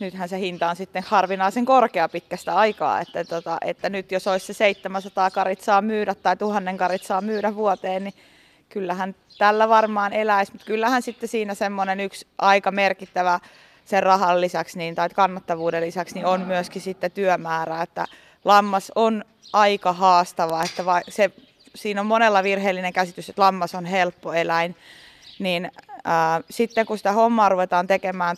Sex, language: female, Finnish